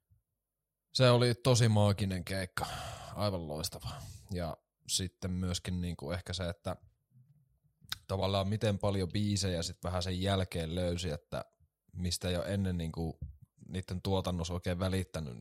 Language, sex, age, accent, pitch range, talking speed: Finnish, male, 20-39, native, 90-105 Hz, 125 wpm